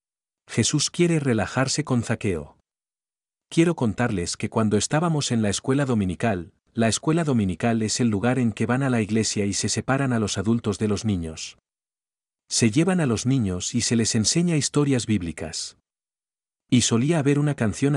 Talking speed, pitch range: 170 wpm, 100-130 Hz